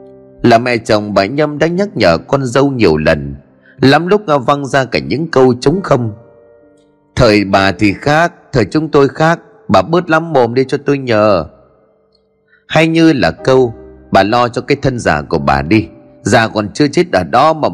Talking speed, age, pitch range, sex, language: 195 wpm, 30-49, 105-160 Hz, male, Vietnamese